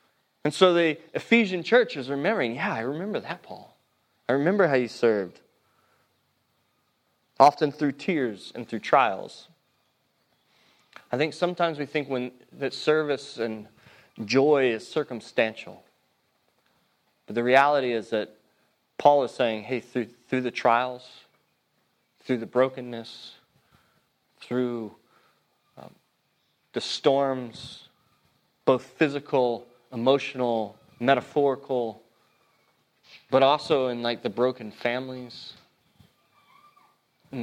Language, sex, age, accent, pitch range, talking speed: English, male, 30-49, American, 120-145 Hz, 110 wpm